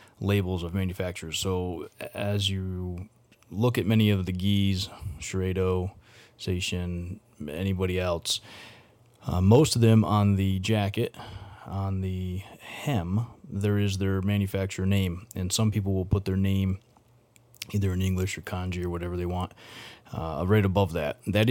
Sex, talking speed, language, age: male, 145 wpm, English, 30-49